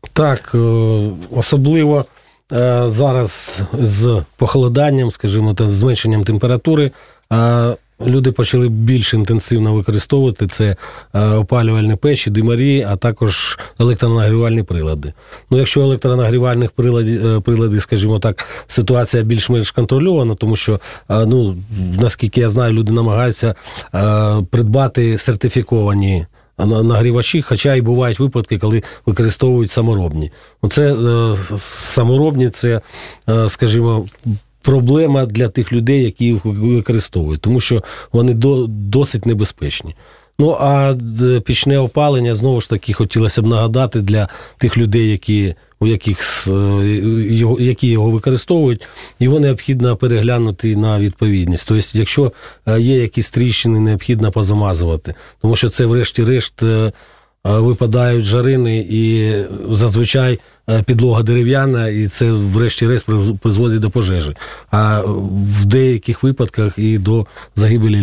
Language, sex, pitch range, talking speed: Russian, male, 105-125 Hz, 105 wpm